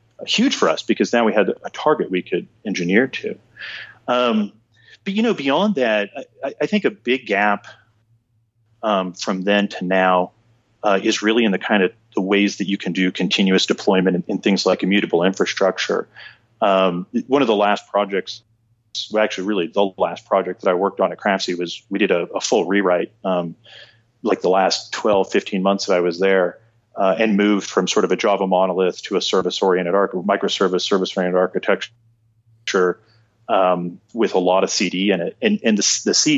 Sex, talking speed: male, 190 wpm